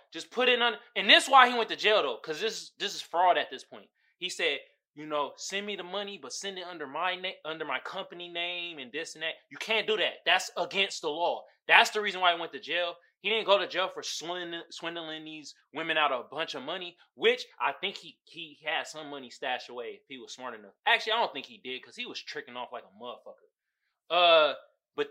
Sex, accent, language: male, American, English